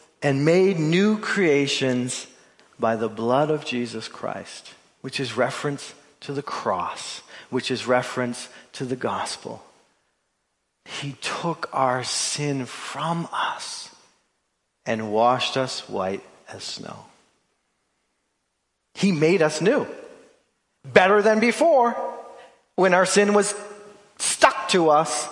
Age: 40-59